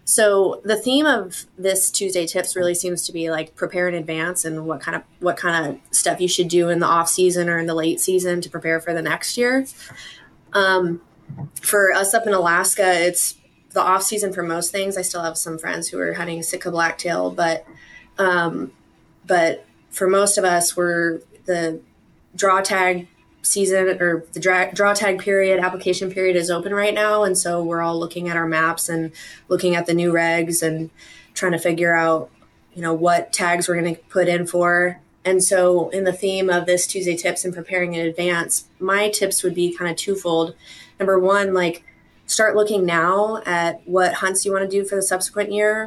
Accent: American